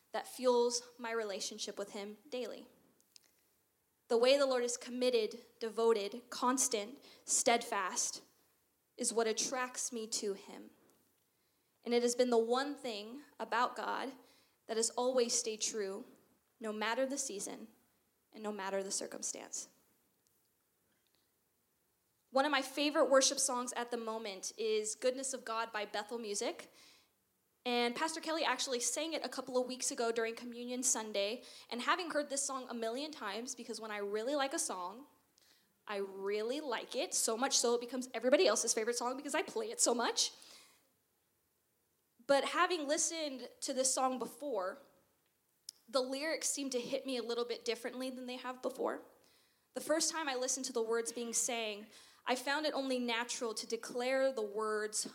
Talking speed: 160 wpm